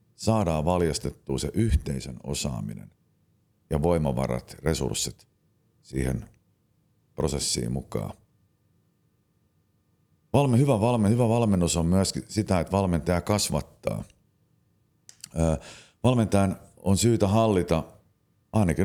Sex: male